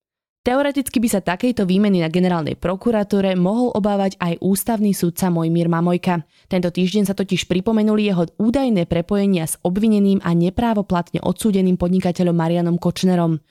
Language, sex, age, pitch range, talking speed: Slovak, female, 20-39, 170-210 Hz, 140 wpm